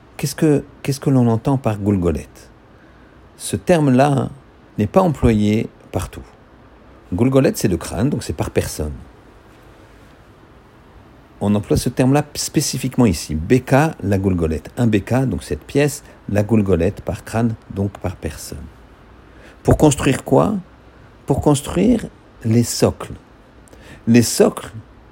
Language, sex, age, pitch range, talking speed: French, male, 50-69, 100-130 Hz, 120 wpm